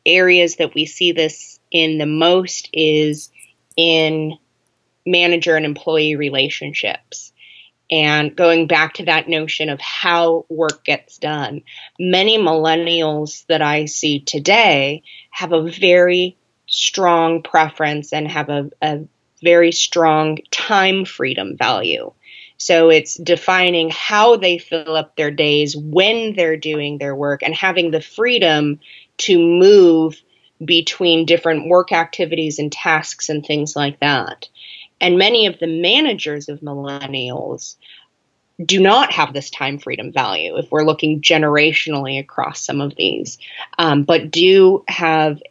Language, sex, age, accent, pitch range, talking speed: English, female, 20-39, American, 150-175 Hz, 135 wpm